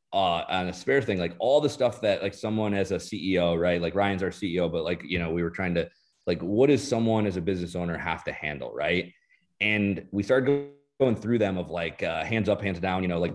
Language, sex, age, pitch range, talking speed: English, male, 30-49, 90-110 Hz, 250 wpm